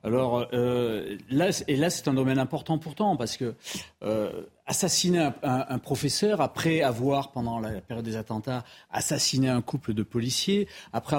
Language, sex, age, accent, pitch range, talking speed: French, male, 40-59, French, 110-145 Hz, 160 wpm